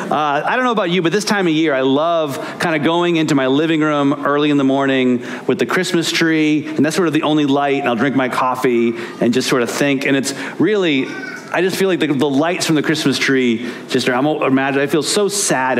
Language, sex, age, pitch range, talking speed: English, male, 40-59, 130-170 Hz, 260 wpm